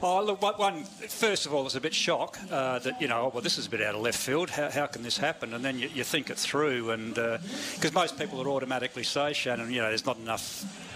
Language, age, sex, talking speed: English, 50-69, male, 275 wpm